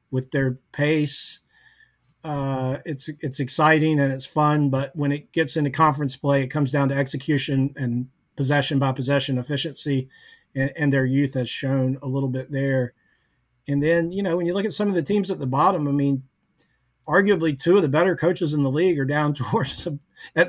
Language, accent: English, American